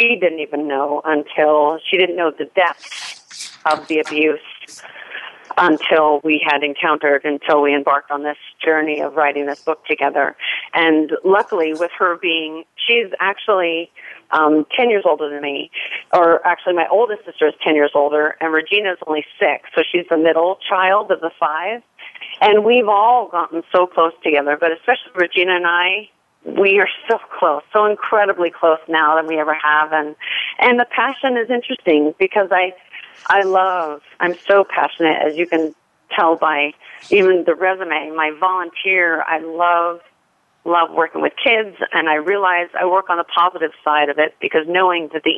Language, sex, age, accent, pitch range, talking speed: English, female, 40-59, American, 155-190 Hz, 175 wpm